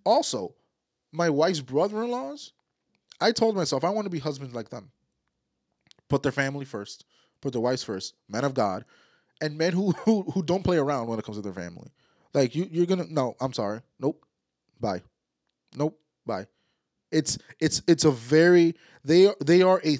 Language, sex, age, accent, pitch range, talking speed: English, male, 20-39, American, 130-180 Hz, 175 wpm